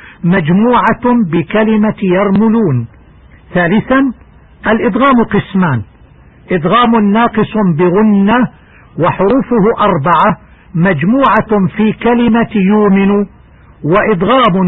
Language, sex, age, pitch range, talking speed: Arabic, male, 60-79, 180-225 Hz, 65 wpm